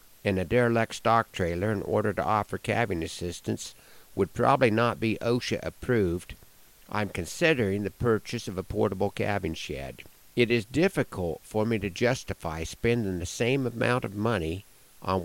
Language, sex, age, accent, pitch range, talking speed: English, male, 60-79, American, 95-120 Hz, 155 wpm